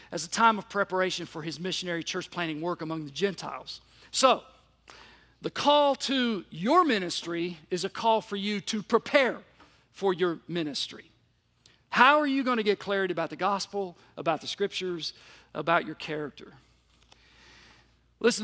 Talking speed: 150 wpm